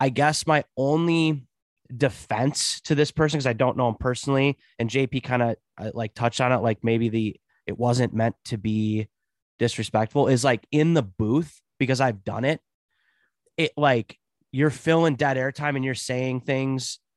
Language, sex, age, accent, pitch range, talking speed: English, male, 20-39, American, 115-140 Hz, 175 wpm